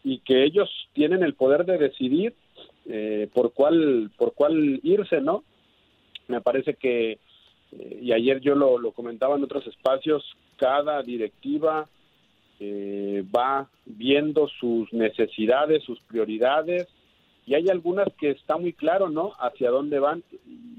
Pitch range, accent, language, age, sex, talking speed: 130-195 Hz, Mexican, Spanish, 50-69, male, 140 wpm